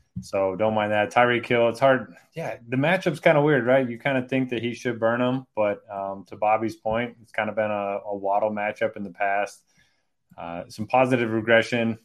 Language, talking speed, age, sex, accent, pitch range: English, 220 wpm, 20-39, male, American, 100-115 Hz